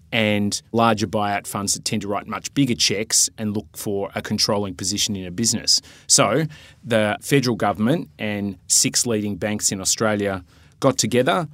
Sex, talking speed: male, 165 wpm